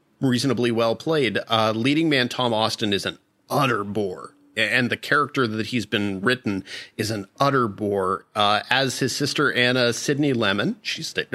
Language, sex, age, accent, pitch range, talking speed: English, male, 40-59, American, 105-145 Hz, 170 wpm